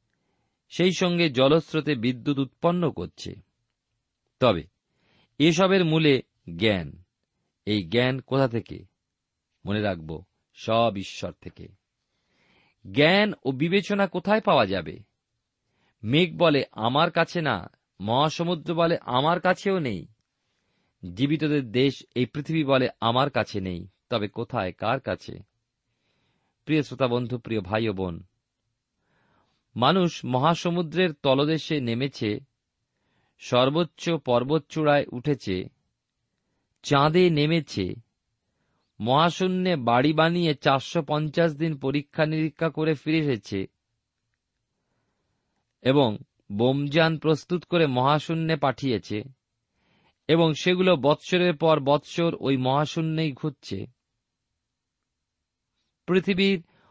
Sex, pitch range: male, 115-160 Hz